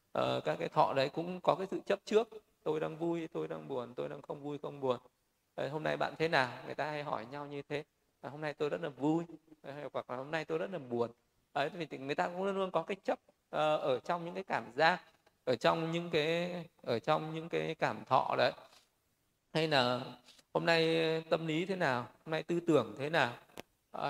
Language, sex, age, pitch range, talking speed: Vietnamese, male, 20-39, 130-170 Hz, 235 wpm